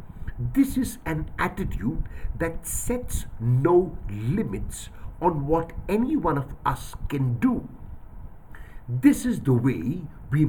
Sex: male